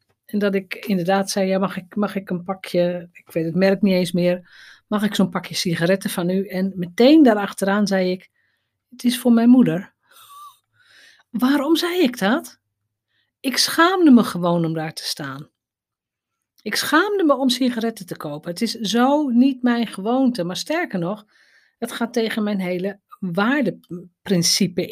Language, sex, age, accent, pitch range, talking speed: Dutch, female, 40-59, Dutch, 175-230 Hz, 170 wpm